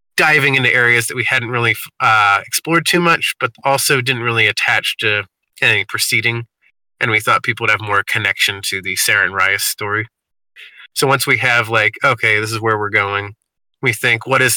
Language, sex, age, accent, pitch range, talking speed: English, male, 30-49, American, 110-130 Hz, 195 wpm